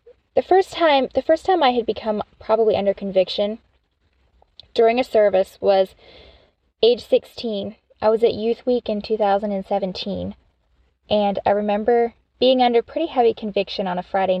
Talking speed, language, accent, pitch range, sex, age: 150 wpm, English, American, 195-250 Hz, female, 10-29